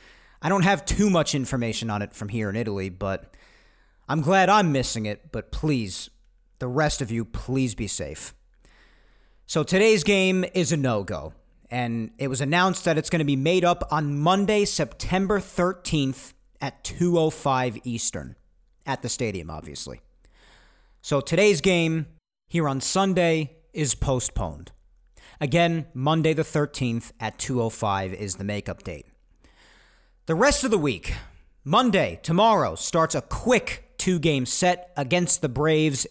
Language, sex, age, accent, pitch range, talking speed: English, male, 40-59, American, 115-175 Hz, 145 wpm